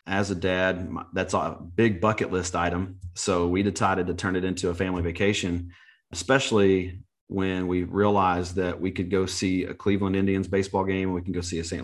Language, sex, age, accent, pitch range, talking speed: English, male, 30-49, American, 90-105 Hz, 200 wpm